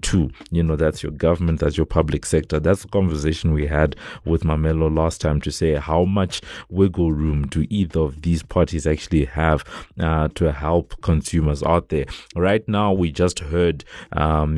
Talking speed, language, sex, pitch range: 175 wpm, English, male, 80-90 Hz